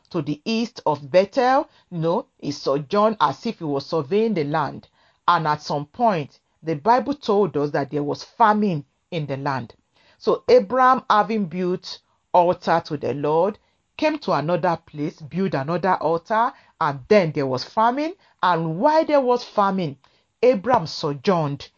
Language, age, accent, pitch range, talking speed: English, 40-59, Nigerian, 160-240 Hz, 155 wpm